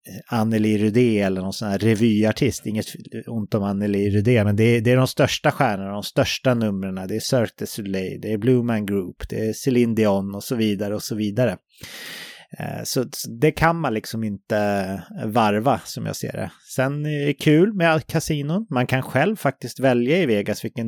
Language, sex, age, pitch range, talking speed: English, male, 30-49, 105-130 Hz, 195 wpm